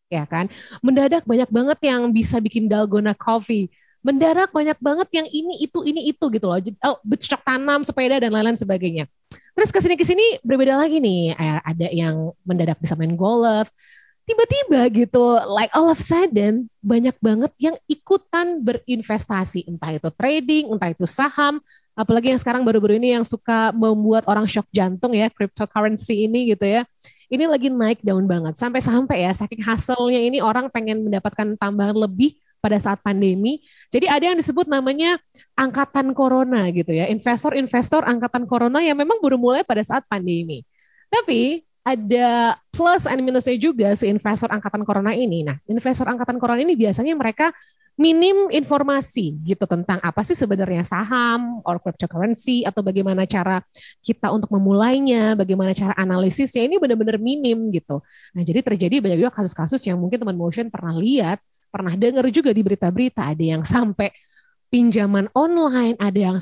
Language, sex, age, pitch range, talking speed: Indonesian, female, 20-39, 200-270 Hz, 160 wpm